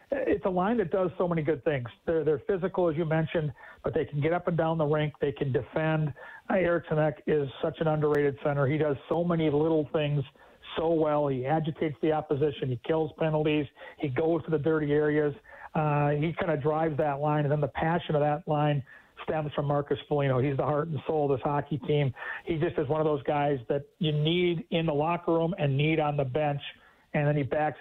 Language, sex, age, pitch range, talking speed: English, male, 40-59, 145-160 Hz, 225 wpm